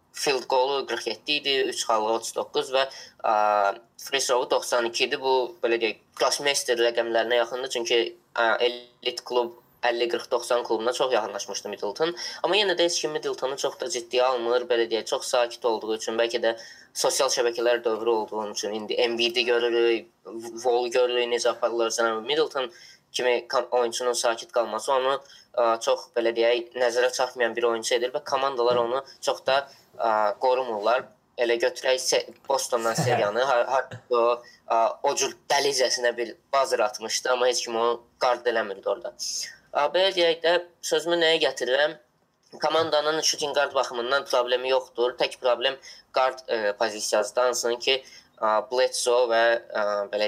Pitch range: 115-135 Hz